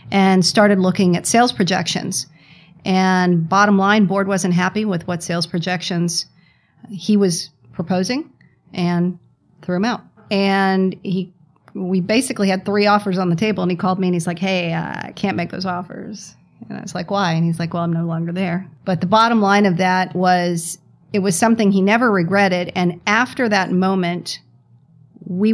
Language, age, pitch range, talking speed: English, 40-59, 170-190 Hz, 185 wpm